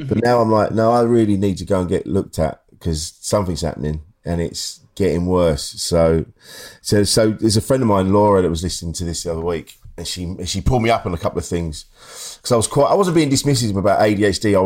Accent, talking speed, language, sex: British, 245 wpm, English, male